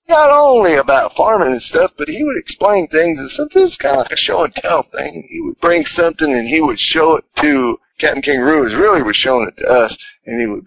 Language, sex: English, male